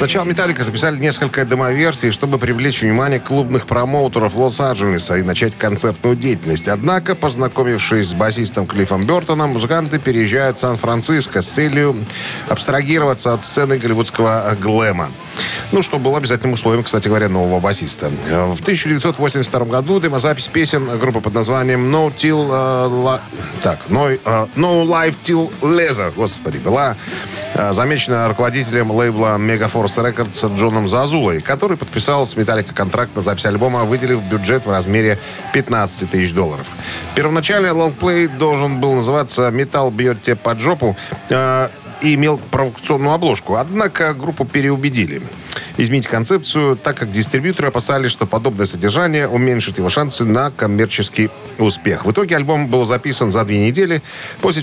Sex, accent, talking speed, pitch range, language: male, native, 140 wpm, 110-145 Hz, Russian